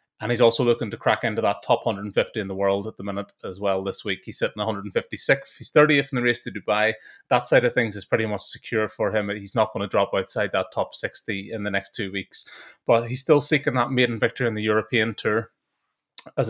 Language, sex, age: English, male, 20-39